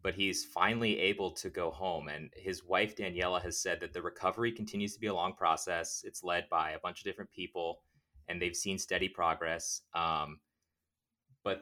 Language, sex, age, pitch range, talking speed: English, male, 30-49, 80-100 Hz, 190 wpm